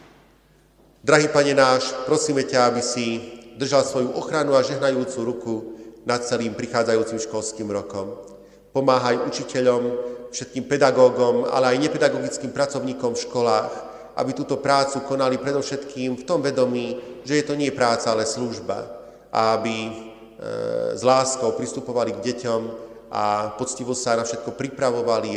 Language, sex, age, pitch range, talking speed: Slovak, male, 40-59, 115-130 Hz, 130 wpm